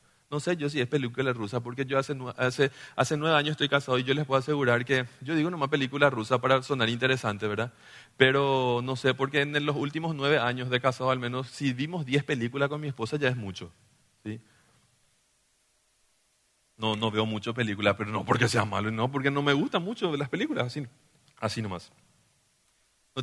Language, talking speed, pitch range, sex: Spanish, 205 wpm, 125-170 Hz, male